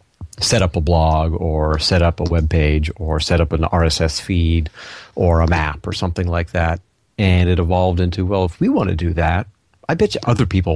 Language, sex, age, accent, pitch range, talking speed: English, male, 40-59, American, 85-100 Hz, 220 wpm